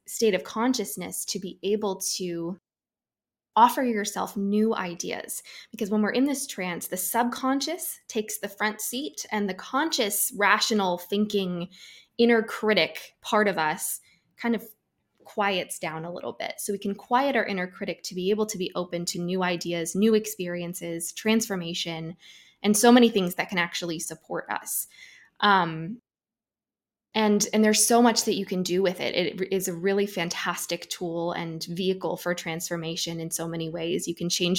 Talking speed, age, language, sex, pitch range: 165 wpm, 20-39, English, female, 175-215 Hz